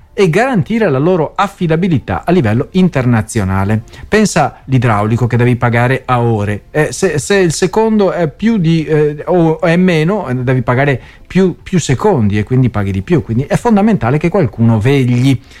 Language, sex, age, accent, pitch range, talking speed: Italian, male, 40-59, native, 120-185 Hz, 165 wpm